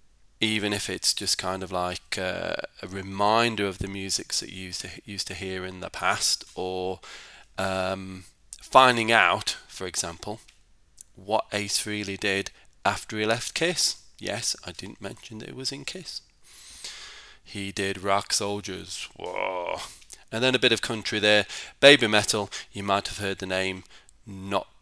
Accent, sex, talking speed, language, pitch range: British, male, 160 wpm, English, 95-110 Hz